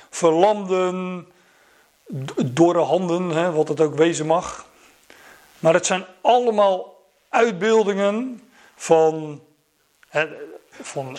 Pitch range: 145-185 Hz